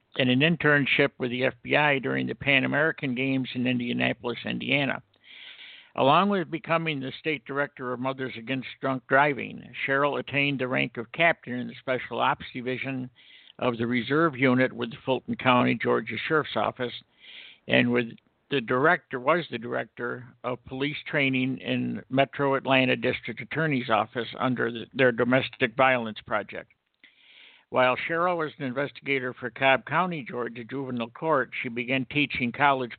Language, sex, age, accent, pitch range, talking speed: English, male, 60-79, American, 120-140 Hz, 145 wpm